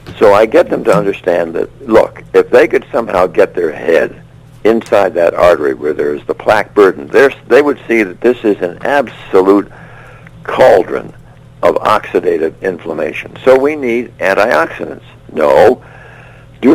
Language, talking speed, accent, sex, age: English, 150 wpm, American, male, 60-79